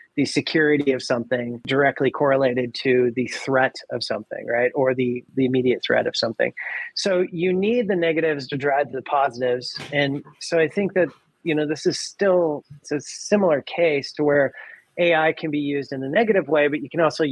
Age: 30-49